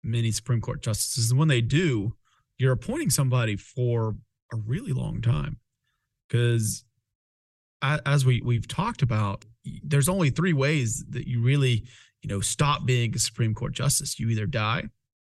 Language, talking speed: English, 160 wpm